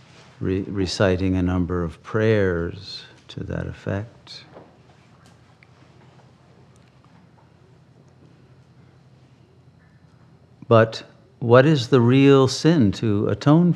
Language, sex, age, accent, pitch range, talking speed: English, male, 50-69, American, 100-135 Hz, 70 wpm